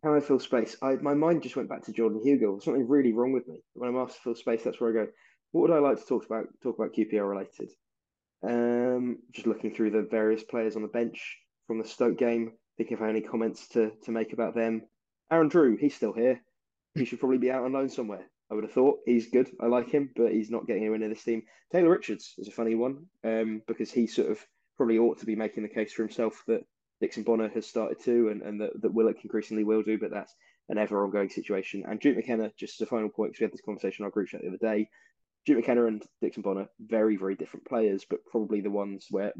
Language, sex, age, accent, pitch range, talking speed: English, male, 20-39, British, 105-120 Hz, 255 wpm